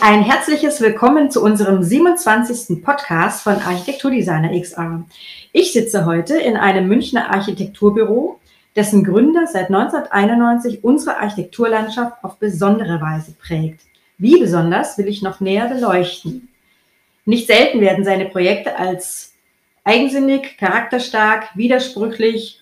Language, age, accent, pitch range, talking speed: German, 30-49, German, 185-245 Hz, 115 wpm